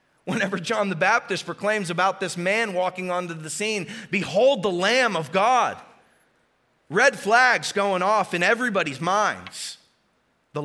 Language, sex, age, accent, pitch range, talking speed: English, male, 30-49, American, 135-170 Hz, 140 wpm